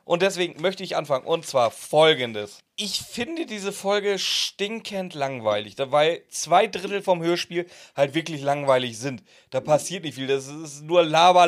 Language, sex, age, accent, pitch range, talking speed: German, male, 30-49, German, 145-185 Hz, 160 wpm